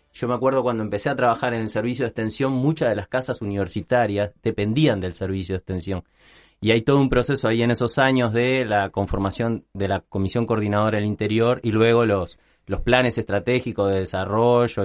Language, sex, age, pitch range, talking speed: Spanish, male, 30-49, 105-130 Hz, 195 wpm